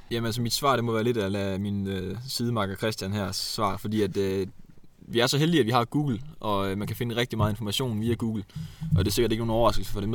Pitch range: 100-115 Hz